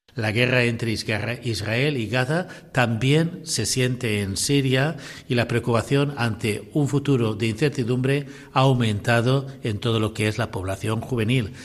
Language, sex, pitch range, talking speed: Spanish, male, 110-140 Hz, 150 wpm